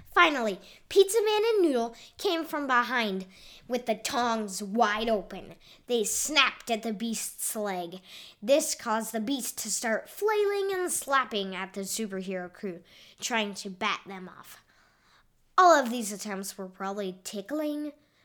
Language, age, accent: English, 10-29, American